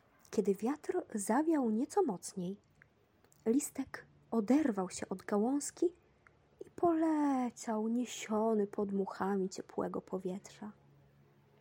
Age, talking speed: 20-39, 90 wpm